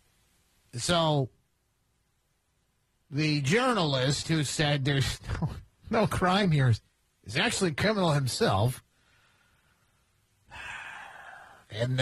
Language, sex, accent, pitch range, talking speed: English, male, American, 115-160 Hz, 80 wpm